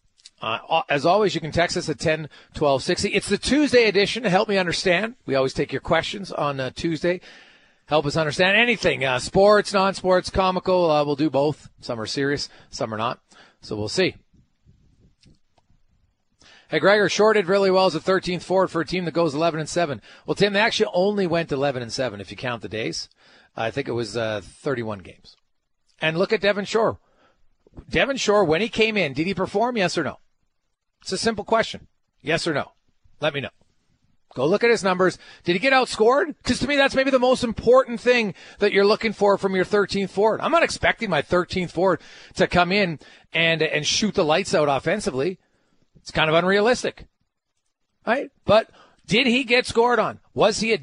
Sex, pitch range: male, 155-220 Hz